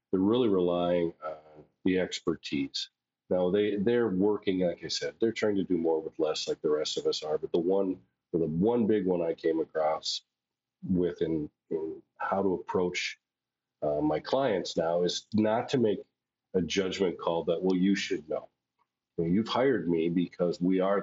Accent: American